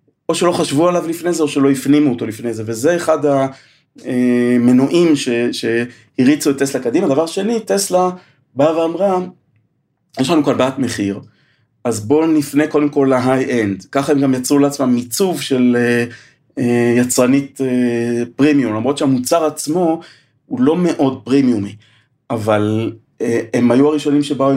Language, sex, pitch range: Hebrew, male, 125-150 Hz